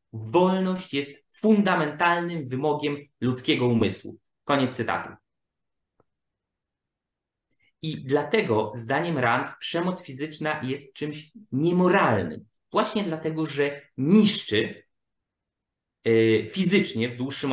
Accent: native